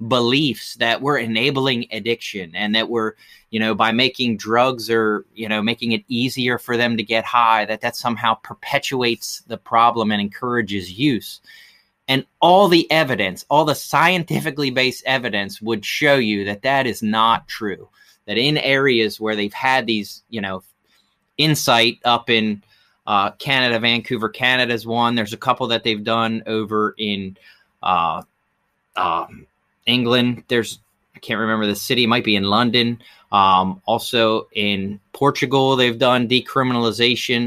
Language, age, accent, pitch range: English, 30-49, American, 110-135 Hz